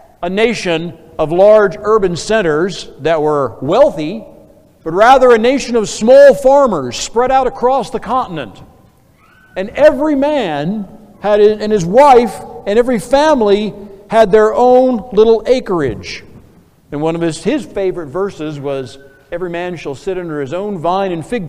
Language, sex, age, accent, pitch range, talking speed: English, male, 60-79, American, 170-235 Hz, 150 wpm